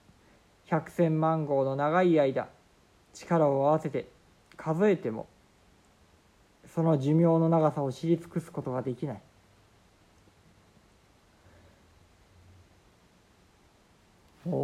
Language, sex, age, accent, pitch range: Japanese, male, 50-69, native, 125-175 Hz